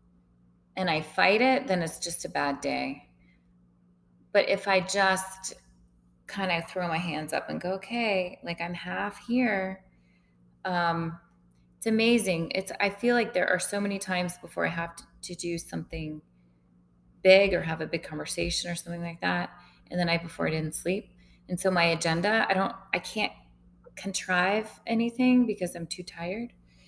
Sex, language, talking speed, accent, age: female, English, 170 wpm, American, 20-39